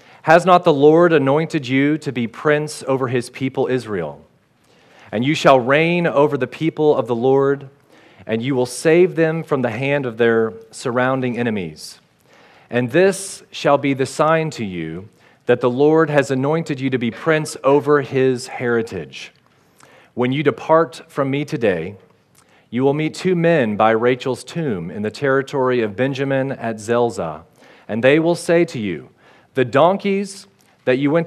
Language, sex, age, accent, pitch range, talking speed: English, male, 40-59, American, 125-155 Hz, 165 wpm